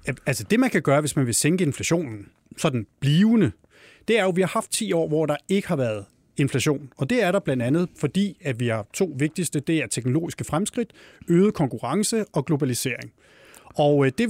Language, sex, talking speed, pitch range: Danish, male, 210 wpm, 135-180 Hz